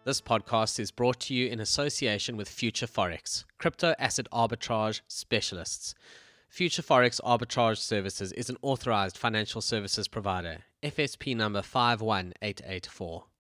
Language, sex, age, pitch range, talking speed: English, male, 20-39, 105-125 Hz, 125 wpm